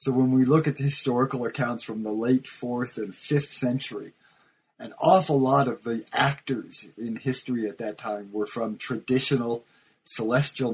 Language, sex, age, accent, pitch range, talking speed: English, male, 40-59, American, 110-135 Hz, 170 wpm